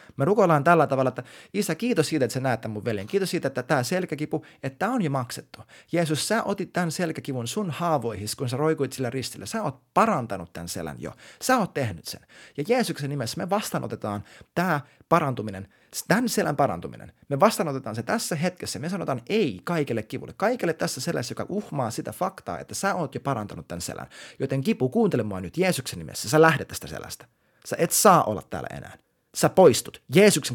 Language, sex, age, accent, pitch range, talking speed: Finnish, male, 30-49, native, 120-175 Hz, 195 wpm